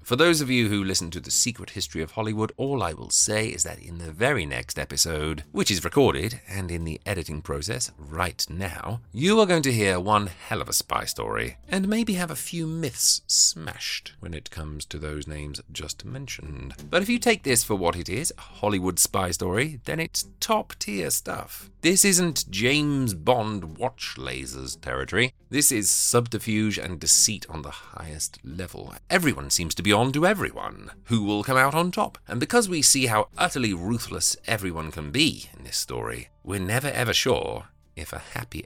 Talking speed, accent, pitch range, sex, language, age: 195 wpm, British, 85-125 Hz, male, English, 30-49